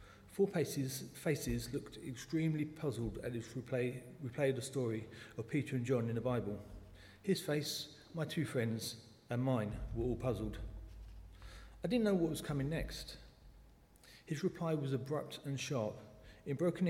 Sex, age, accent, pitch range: male, 40-59, British, 110-145 Hz